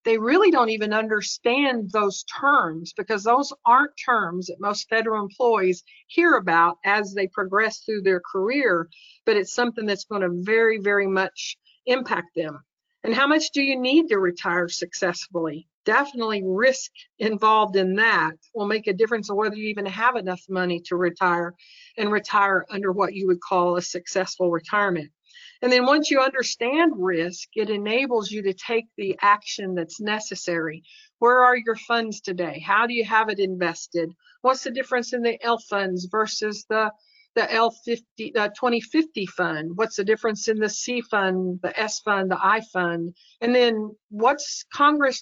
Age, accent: 50-69, American